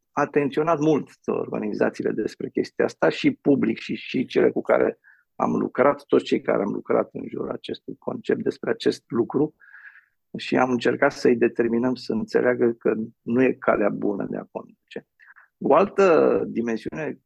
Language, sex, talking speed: Romanian, male, 155 wpm